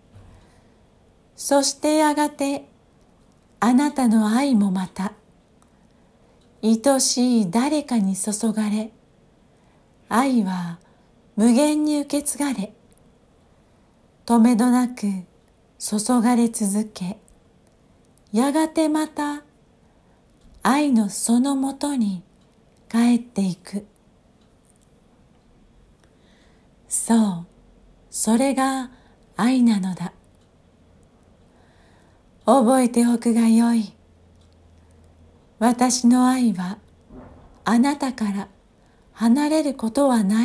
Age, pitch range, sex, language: 40-59, 195-255 Hz, female, Japanese